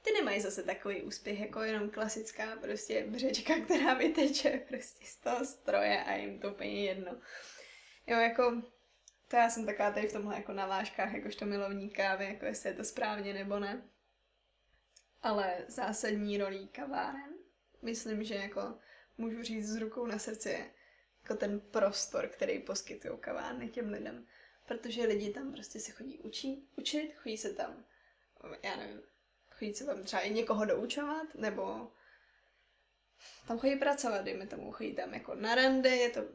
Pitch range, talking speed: 205-240 Hz, 160 wpm